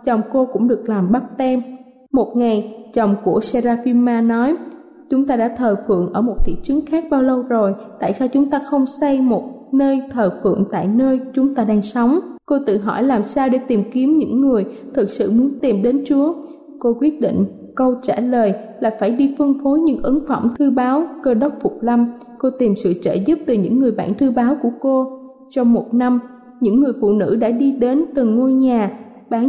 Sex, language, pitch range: female, Thai, 230-275 Hz